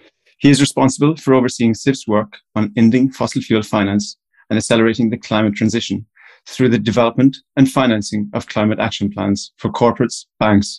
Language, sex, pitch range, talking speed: English, male, 105-120 Hz, 160 wpm